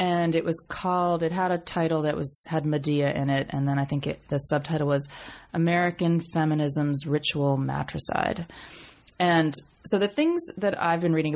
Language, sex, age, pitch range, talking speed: English, female, 30-49, 140-170 Hz, 180 wpm